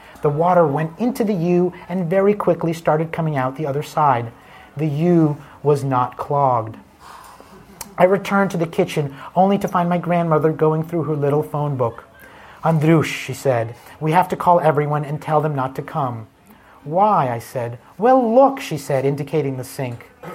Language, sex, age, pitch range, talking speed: English, male, 30-49, 140-170 Hz, 175 wpm